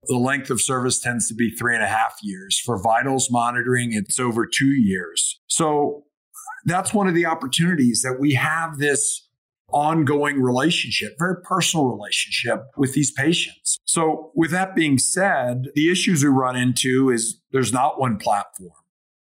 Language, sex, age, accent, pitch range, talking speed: English, male, 50-69, American, 125-155 Hz, 160 wpm